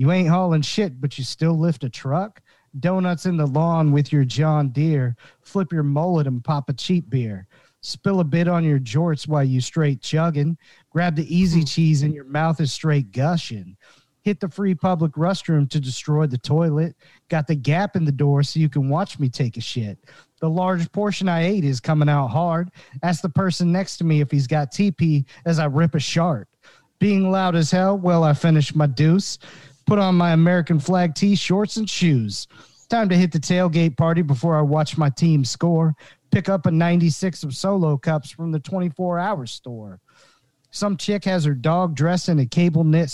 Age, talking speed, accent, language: 40-59, 200 wpm, American, English